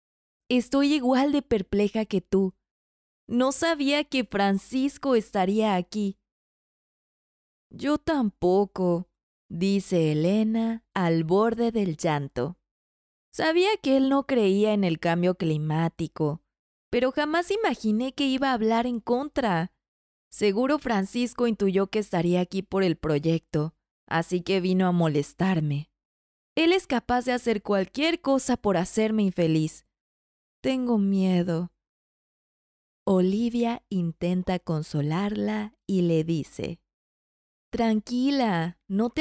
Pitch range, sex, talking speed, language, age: 175-250 Hz, female, 110 wpm, Spanish, 20-39